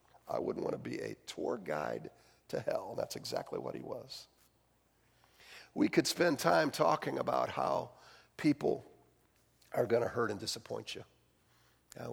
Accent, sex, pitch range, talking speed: American, male, 150-245 Hz, 150 wpm